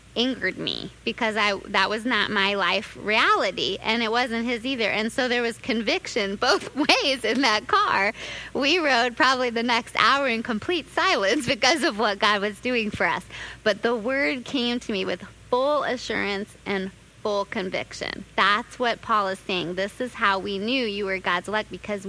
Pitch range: 200-245 Hz